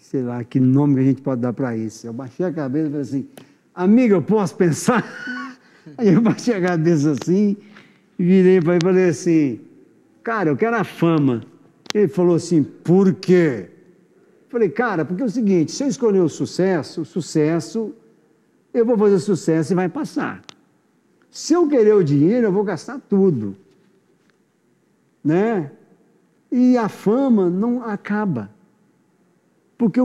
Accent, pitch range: Brazilian, 145-210 Hz